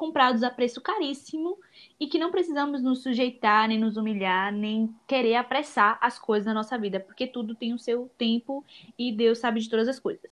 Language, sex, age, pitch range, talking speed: Portuguese, female, 10-29, 200-260 Hz, 195 wpm